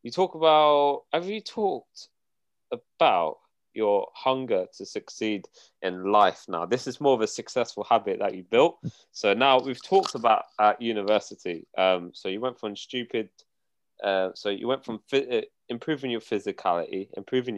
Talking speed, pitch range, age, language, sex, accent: 160 wpm, 105-145 Hz, 20-39, English, male, British